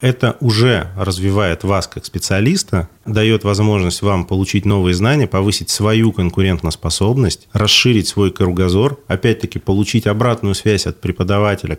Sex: male